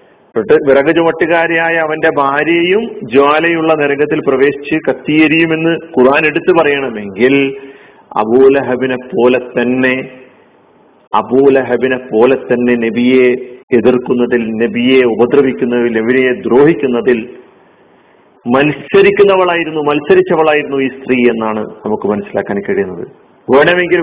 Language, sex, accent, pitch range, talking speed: Malayalam, male, native, 125-160 Hz, 75 wpm